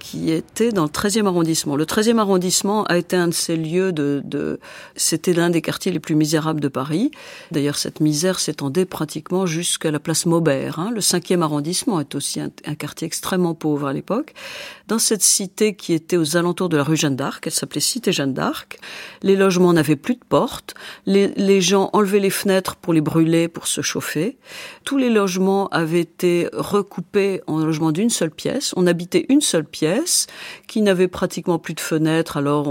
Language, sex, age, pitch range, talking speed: French, female, 50-69, 150-195 Hz, 195 wpm